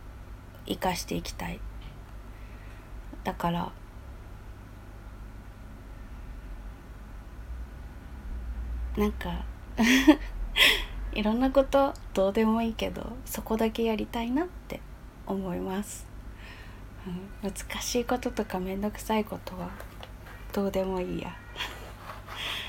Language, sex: Japanese, female